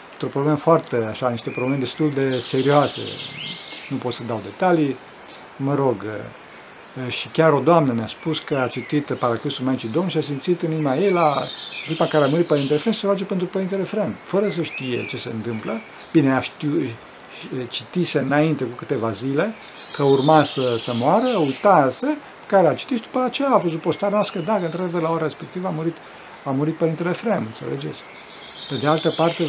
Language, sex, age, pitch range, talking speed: Romanian, male, 50-69, 130-170 Hz, 185 wpm